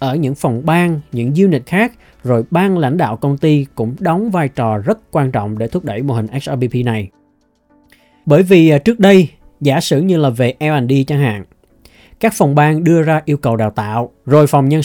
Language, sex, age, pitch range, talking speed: Vietnamese, male, 20-39, 120-165 Hz, 205 wpm